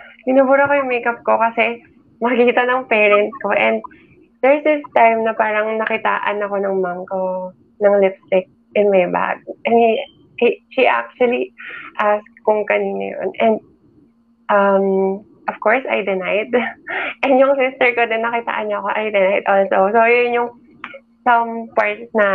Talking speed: 155 wpm